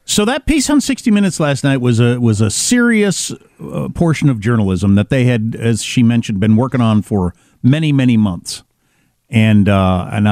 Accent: American